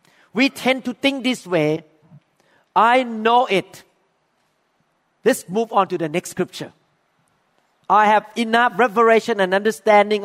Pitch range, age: 185-245 Hz, 50-69